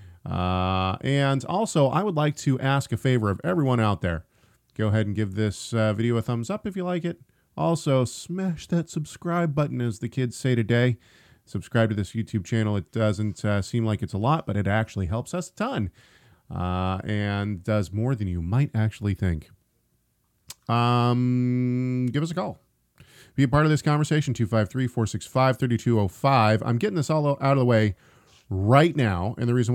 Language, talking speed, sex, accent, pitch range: English, 185 wpm, male, American, 105-140 Hz